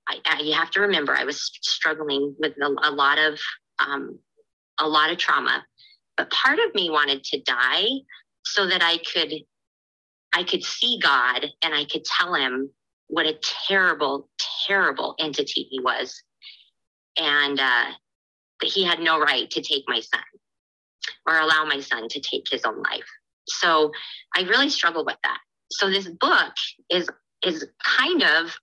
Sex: female